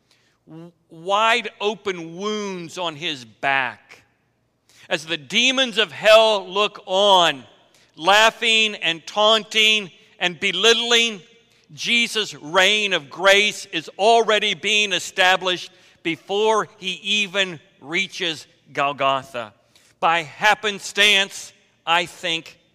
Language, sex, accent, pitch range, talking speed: English, male, American, 160-215 Hz, 90 wpm